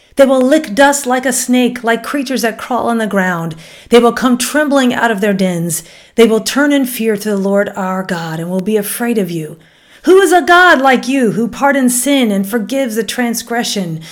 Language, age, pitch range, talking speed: English, 40-59, 185-250 Hz, 215 wpm